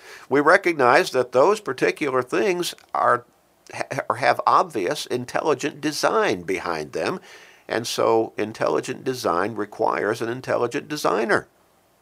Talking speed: 105 wpm